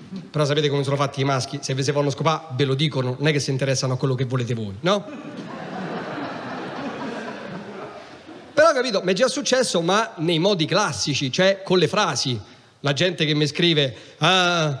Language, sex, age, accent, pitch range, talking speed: English, male, 40-59, Italian, 150-200 Hz, 190 wpm